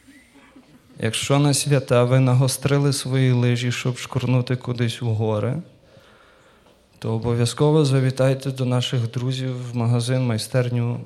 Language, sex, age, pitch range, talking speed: Ukrainian, male, 20-39, 115-135 Hz, 110 wpm